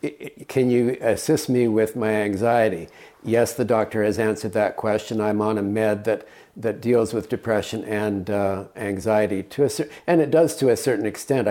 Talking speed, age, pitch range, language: 190 wpm, 50-69, 105-130 Hz, English